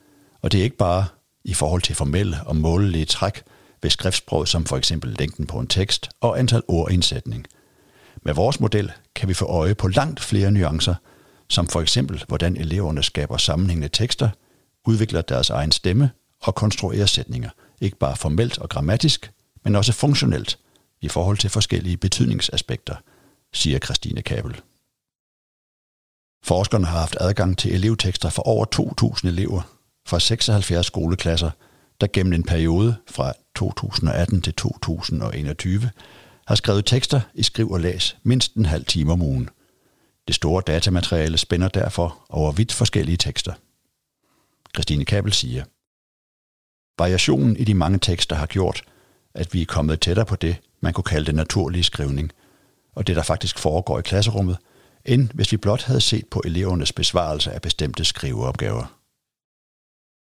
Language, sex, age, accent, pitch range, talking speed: Danish, male, 60-79, native, 85-110 Hz, 150 wpm